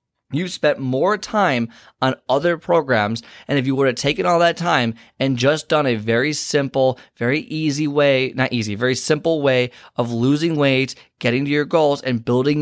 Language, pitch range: English, 115-135 Hz